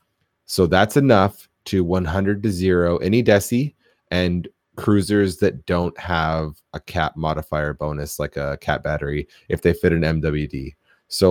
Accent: American